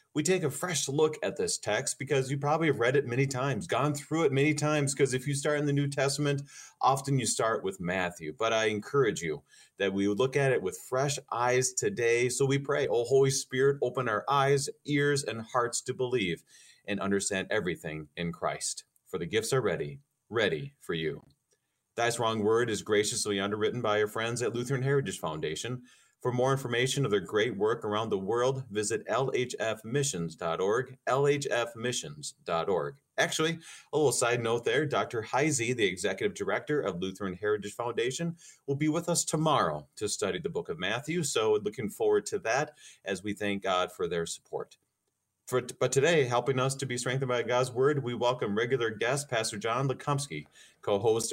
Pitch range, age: 110-140 Hz, 30-49